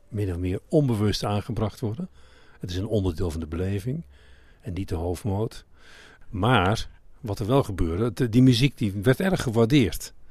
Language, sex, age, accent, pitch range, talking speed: Dutch, male, 50-69, Dutch, 95-125 Hz, 165 wpm